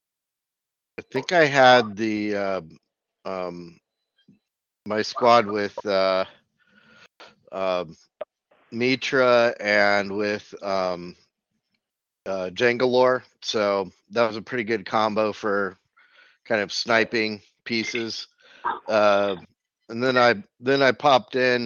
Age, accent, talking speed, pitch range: 50-69, American, 110 wpm, 105-125 Hz